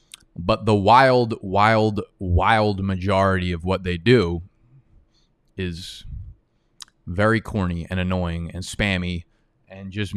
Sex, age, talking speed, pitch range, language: male, 20-39, 110 wpm, 95-120 Hz, English